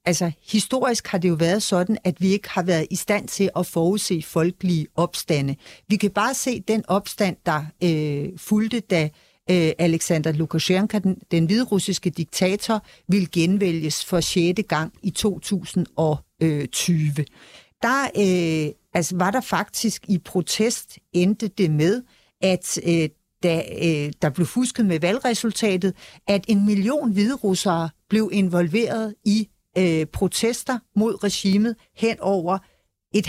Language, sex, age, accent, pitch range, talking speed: Danish, female, 50-69, native, 170-215 Hz, 140 wpm